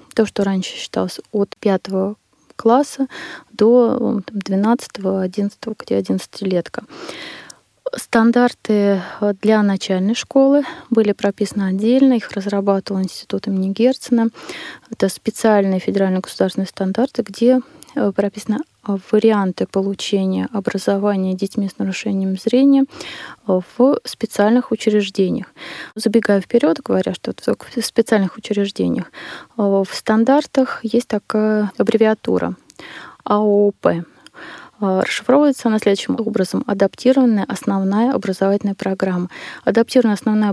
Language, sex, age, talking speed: Russian, female, 20-39, 95 wpm